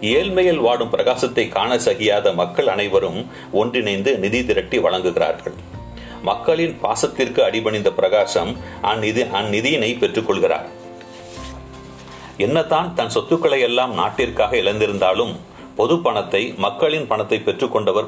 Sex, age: male, 40-59